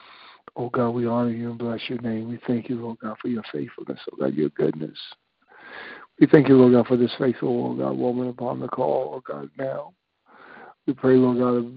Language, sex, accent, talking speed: English, male, American, 215 wpm